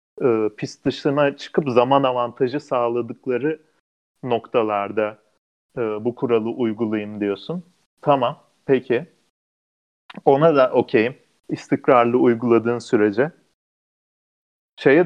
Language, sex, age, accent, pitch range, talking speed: Turkish, male, 40-59, native, 110-140 Hz, 90 wpm